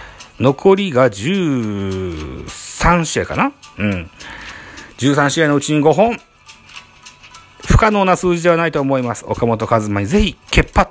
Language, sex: Japanese, male